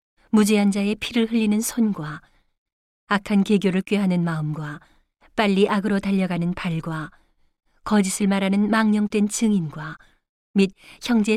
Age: 40-59